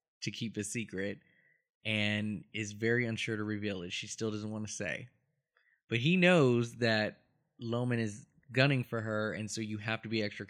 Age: 20-39